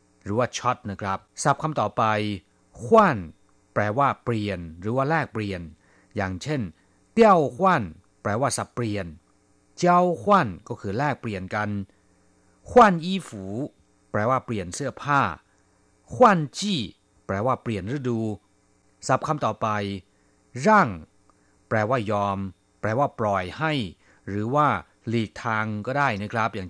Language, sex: Thai, male